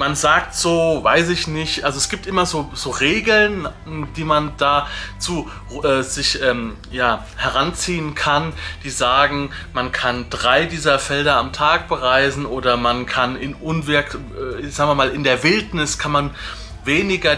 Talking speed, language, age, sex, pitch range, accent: 165 wpm, German, 30-49, male, 135-180 Hz, German